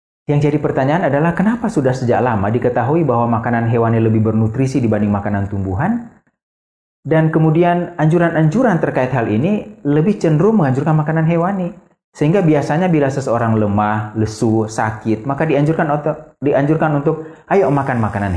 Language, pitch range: Indonesian, 110-155 Hz